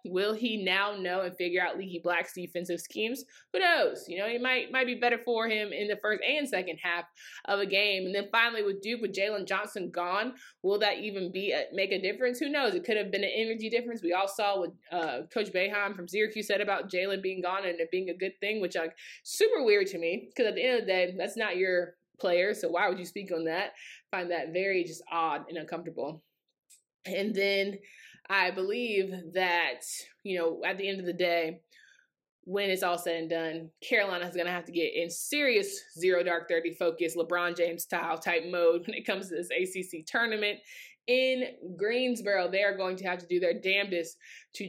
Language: English